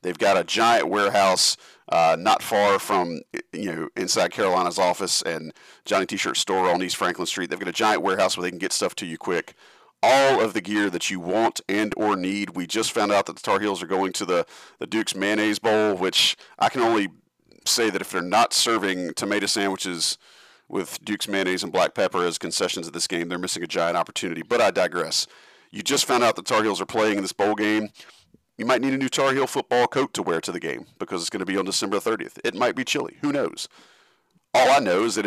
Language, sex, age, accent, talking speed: English, male, 40-59, American, 235 wpm